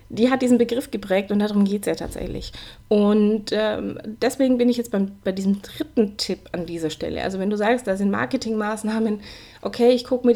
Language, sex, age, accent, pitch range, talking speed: German, female, 20-39, German, 205-245 Hz, 205 wpm